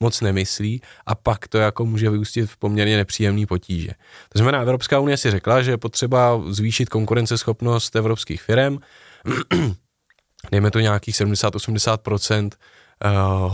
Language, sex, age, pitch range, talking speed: Czech, male, 20-39, 105-125 Hz, 130 wpm